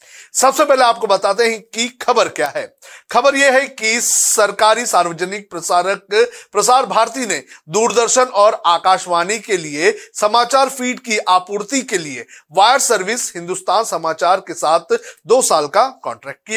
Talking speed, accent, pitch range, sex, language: 65 wpm, native, 175-245 Hz, male, Hindi